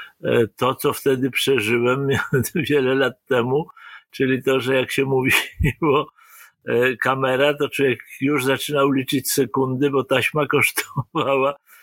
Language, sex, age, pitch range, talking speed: English, male, 50-69, 120-145 Hz, 120 wpm